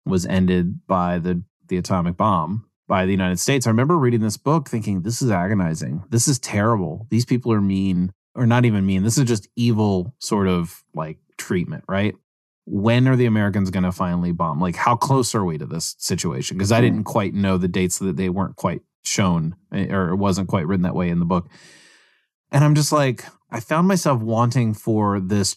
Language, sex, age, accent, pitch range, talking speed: English, male, 30-49, American, 95-115 Hz, 205 wpm